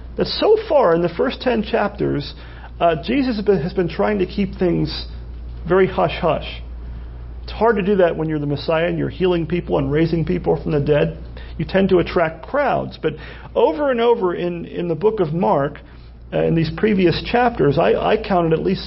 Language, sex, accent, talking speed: English, male, American, 200 wpm